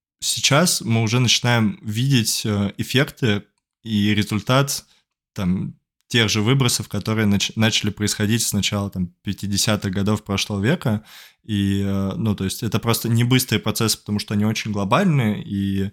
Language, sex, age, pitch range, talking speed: Russian, male, 20-39, 100-115 Hz, 135 wpm